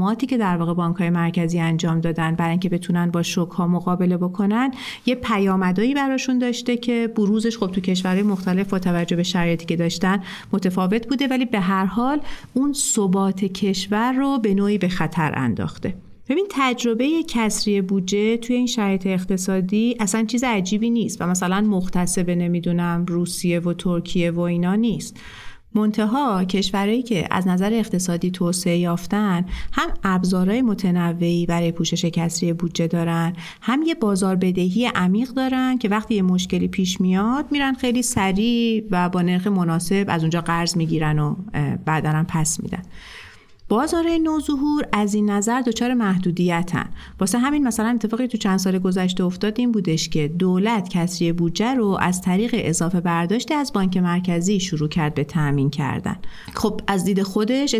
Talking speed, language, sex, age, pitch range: 155 wpm, Persian, female, 40-59, 175-225 Hz